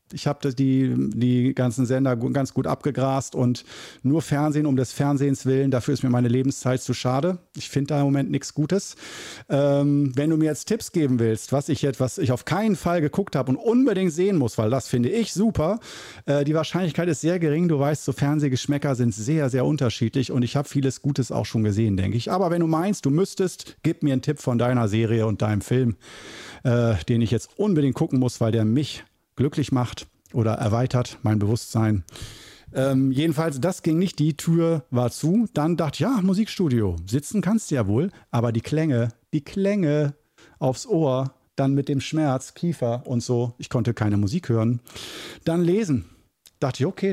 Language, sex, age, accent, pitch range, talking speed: German, male, 40-59, German, 125-155 Hz, 200 wpm